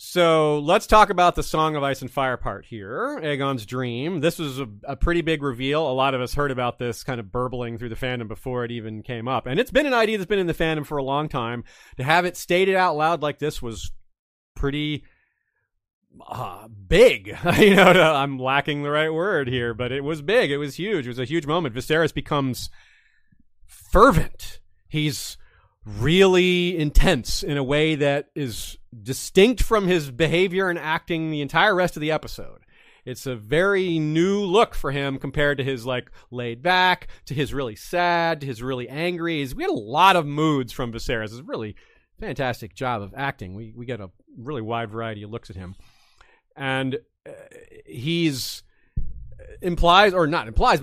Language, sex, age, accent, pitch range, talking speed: English, male, 30-49, American, 125-175 Hz, 190 wpm